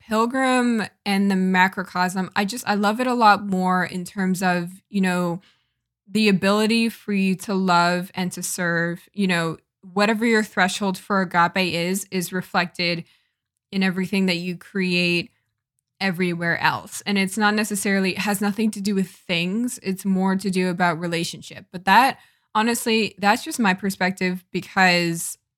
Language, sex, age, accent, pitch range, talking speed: English, female, 10-29, American, 175-205 Hz, 160 wpm